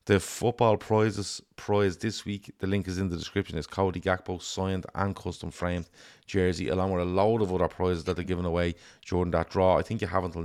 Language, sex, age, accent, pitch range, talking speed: English, male, 30-49, Irish, 85-100 Hz, 225 wpm